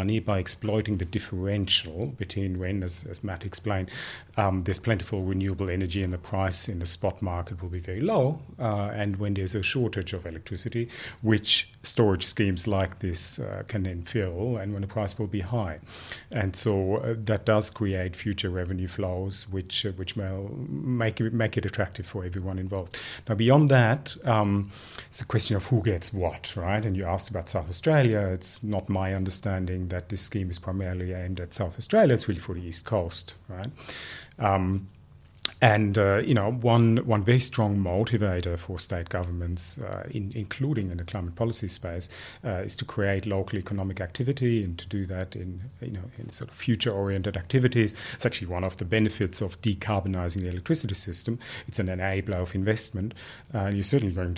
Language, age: English, 30-49